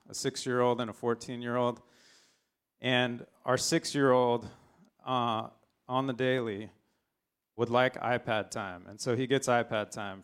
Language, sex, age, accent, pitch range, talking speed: English, male, 30-49, American, 105-130 Hz, 130 wpm